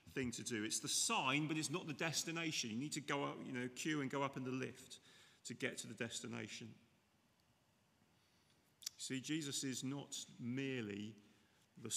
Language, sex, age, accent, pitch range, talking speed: English, male, 40-59, British, 110-155 Hz, 180 wpm